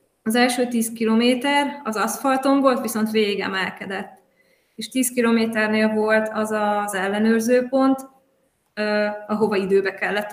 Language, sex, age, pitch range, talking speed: Hungarian, female, 20-39, 200-230 Hz, 110 wpm